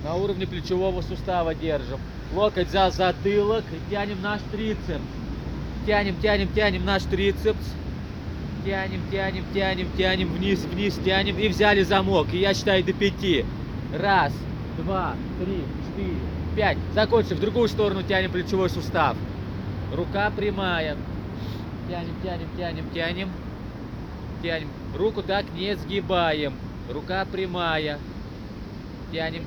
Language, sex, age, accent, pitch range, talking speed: Russian, male, 20-39, native, 155-205 Hz, 115 wpm